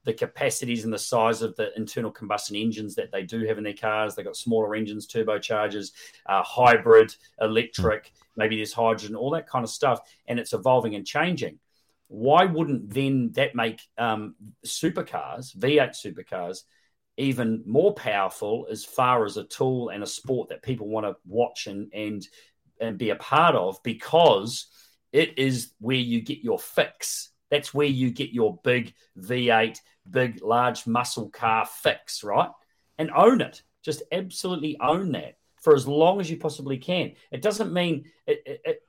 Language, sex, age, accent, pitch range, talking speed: English, male, 40-59, Australian, 110-145 Hz, 170 wpm